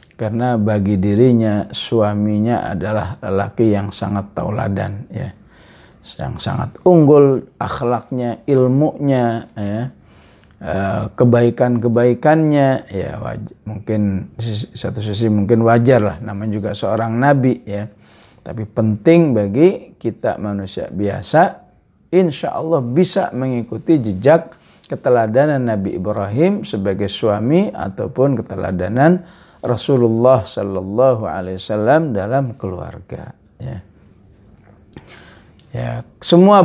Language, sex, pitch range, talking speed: English, male, 100-130 Hz, 90 wpm